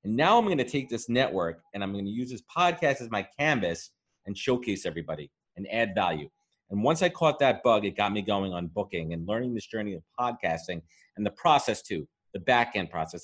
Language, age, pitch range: English, 30-49, 90-120 Hz